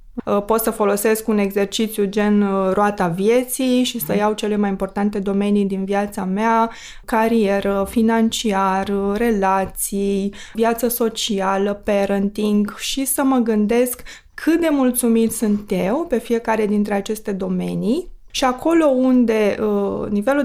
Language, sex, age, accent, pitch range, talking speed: Romanian, female, 20-39, native, 205-245 Hz, 125 wpm